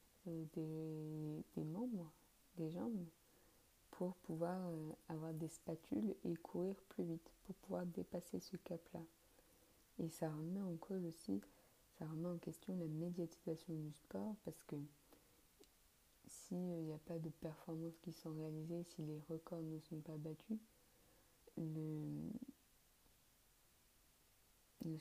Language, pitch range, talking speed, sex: French, 160-175 Hz, 125 wpm, female